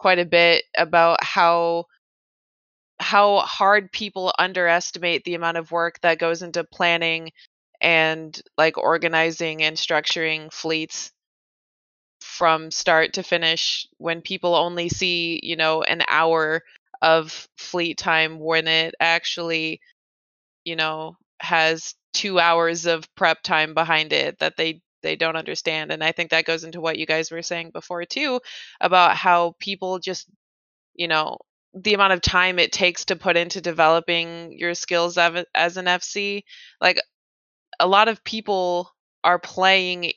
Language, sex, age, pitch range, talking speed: English, female, 20-39, 165-190 Hz, 145 wpm